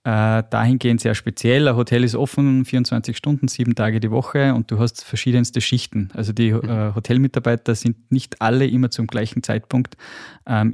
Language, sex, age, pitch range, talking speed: German, male, 20-39, 115-130 Hz, 175 wpm